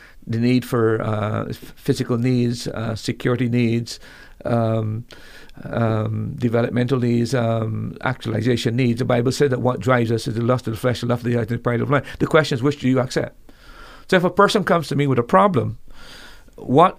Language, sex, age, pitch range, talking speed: English, male, 50-69, 115-135 Hz, 200 wpm